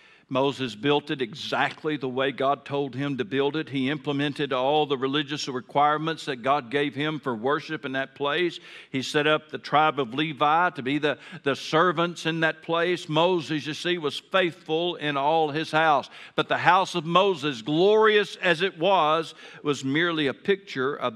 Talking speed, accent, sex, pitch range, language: 185 wpm, American, male, 140-175 Hz, English